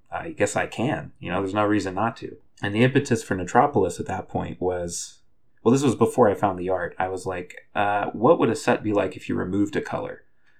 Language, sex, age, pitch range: English, male, 30-49, 90-100 Hz